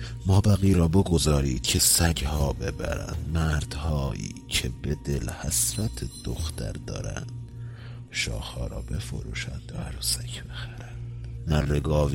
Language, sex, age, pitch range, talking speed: Persian, male, 50-69, 65-95 Hz, 110 wpm